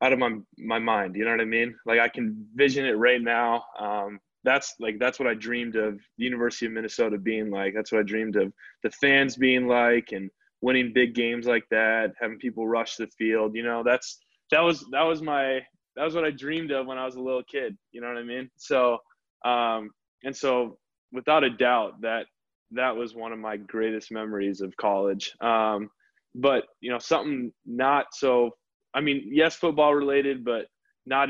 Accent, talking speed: American, 205 wpm